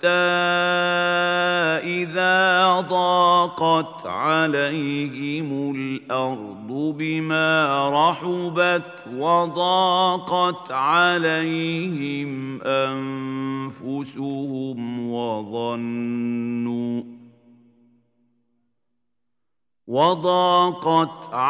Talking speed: 30 wpm